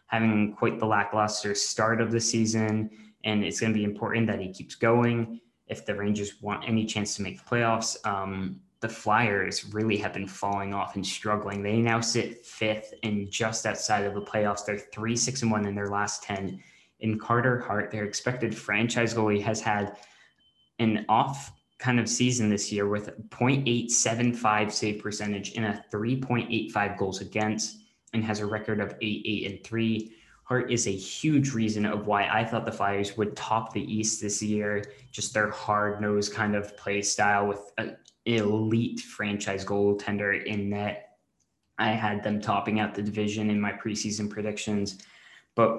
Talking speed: 175 wpm